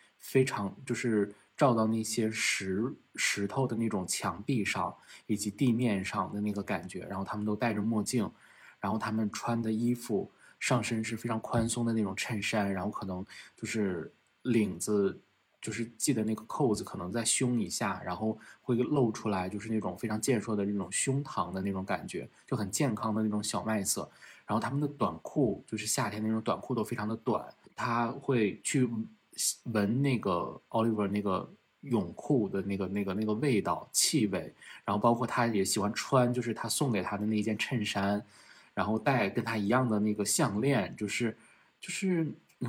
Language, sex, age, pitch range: Chinese, male, 20-39, 105-120 Hz